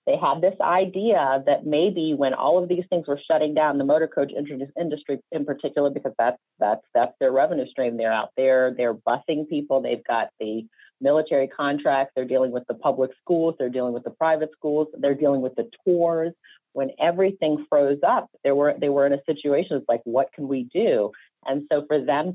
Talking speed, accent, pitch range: 200 wpm, American, 130-155 Hz